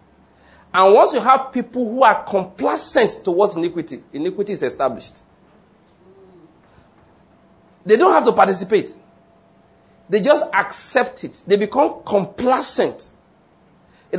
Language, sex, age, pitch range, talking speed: English, male, 40-59, 205-265 Hz, 110 wpm